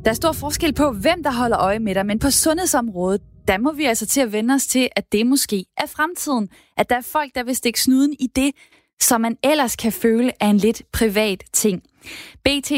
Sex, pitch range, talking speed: female, 205-255 Hz, 230 wpm